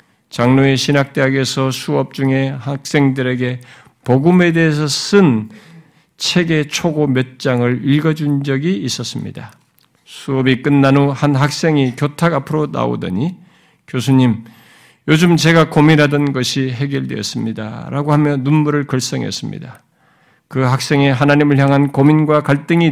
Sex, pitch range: male, 125-155 Hz